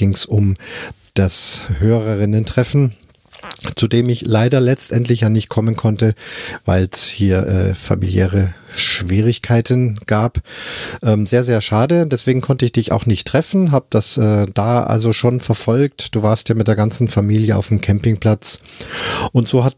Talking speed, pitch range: 150 wpm, 100-120 Hz